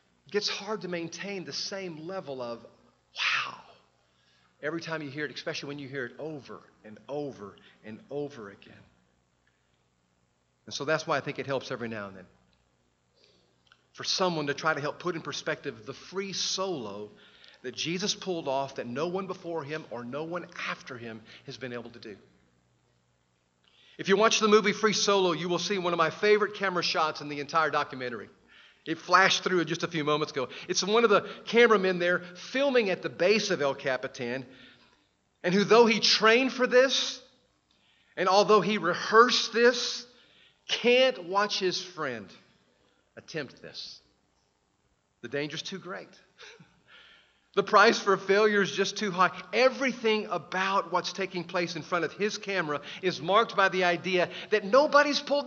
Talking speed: 170 wpm